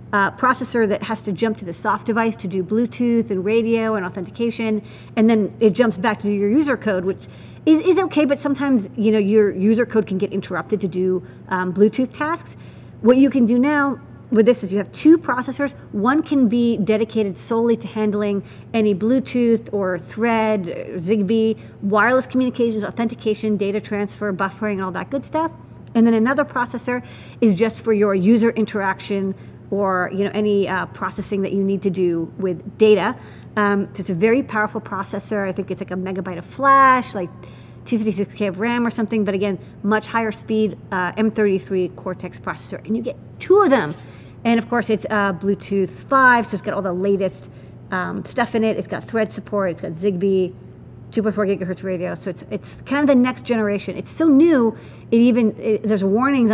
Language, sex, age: English, female, 40-59